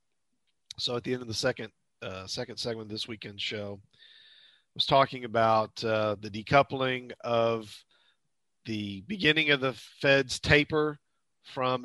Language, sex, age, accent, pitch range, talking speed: English, male, 40-59, American, 110-140 Hz, 145 wpm